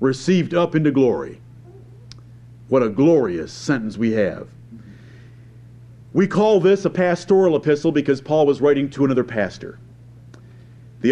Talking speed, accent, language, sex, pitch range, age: 130 wpm, American, English, male, 120-165 Hz, 50-69